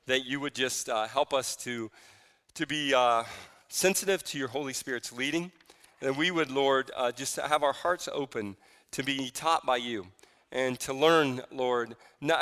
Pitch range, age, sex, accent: 115-150 Hz, 40-59, male, American